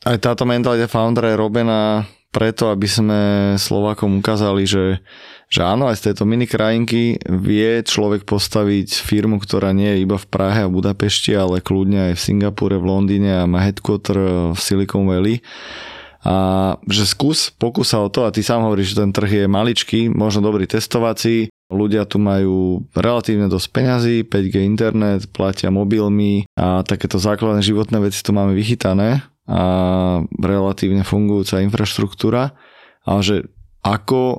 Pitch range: 95-110 Hz